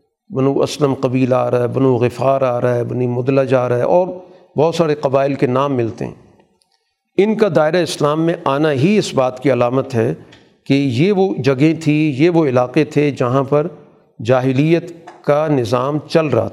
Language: Urdu